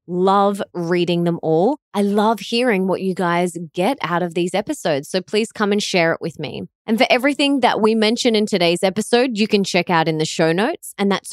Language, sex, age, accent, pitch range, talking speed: English, female, 20-39, Australian, 175-225 Hz, 220 wpm